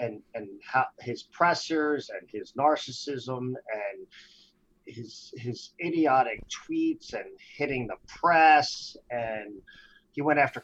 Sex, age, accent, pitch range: male, 50-69, American, 140-220 Hz